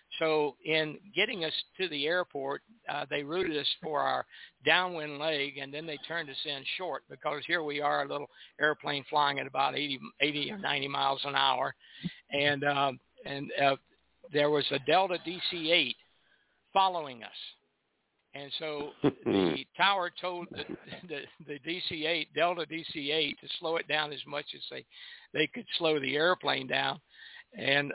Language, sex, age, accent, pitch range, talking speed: English, male, 60-79, American, 145-180 Hz, 165 wpm